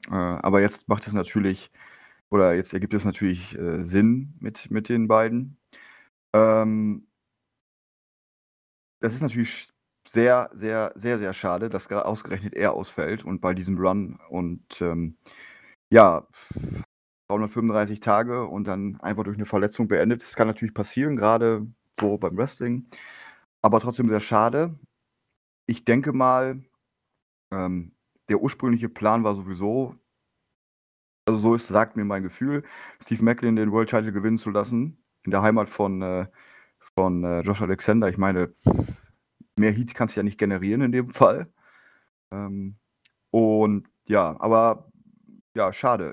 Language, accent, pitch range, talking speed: German, German, 100-120 Hz, 140 wpm